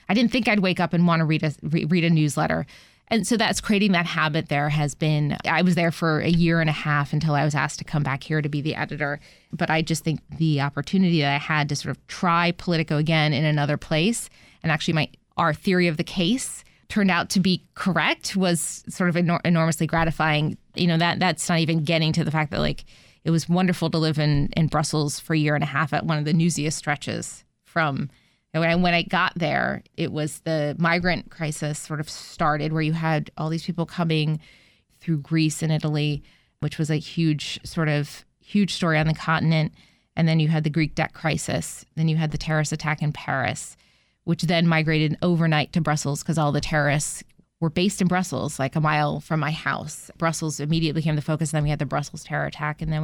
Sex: female